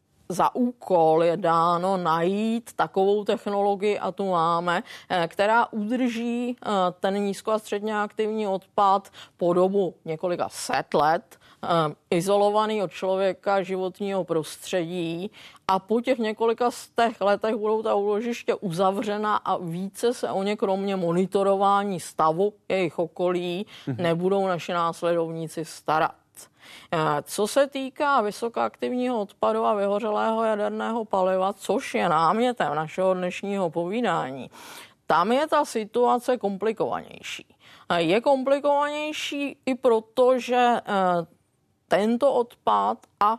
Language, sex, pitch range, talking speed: Czech, female, 185-225 Hz, 110 wpm